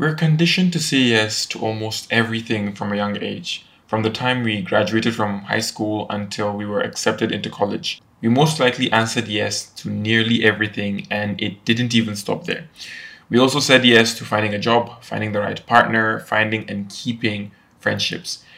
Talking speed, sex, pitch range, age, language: 180 wpm, male, 105-120 Hz, 20-39, English